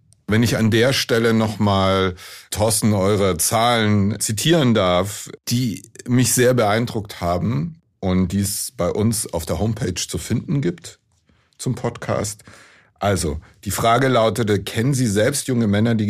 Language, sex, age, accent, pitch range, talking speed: German, male, 60-79, German, 100-125 Hz, 145 wpm